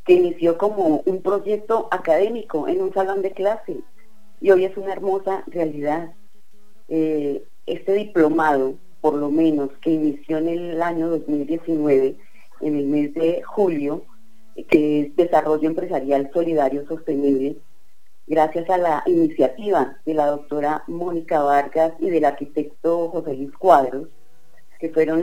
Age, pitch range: 40-59, 150-185 Hz